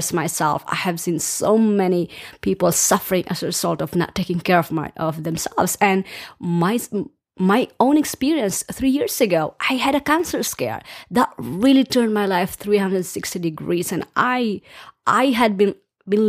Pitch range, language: 180-235 Hz, English